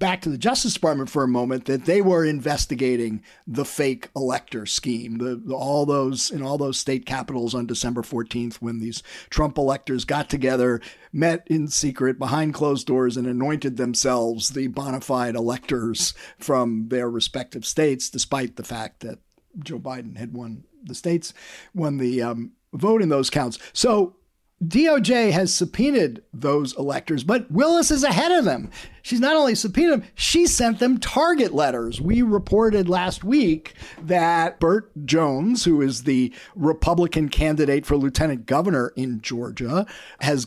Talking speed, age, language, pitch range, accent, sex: 160 wpm, 50-69, English, 130-175 Hz, American, male